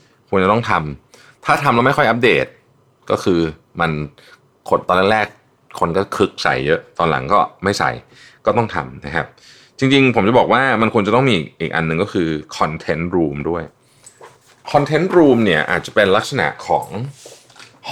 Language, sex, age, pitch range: Thai, male, 20-39, 80-125 Hz